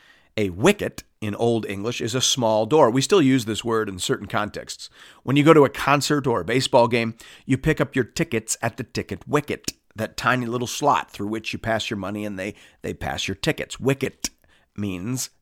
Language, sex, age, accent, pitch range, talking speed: English, male, 40-59, American, 110-150 Hz, 210 wpm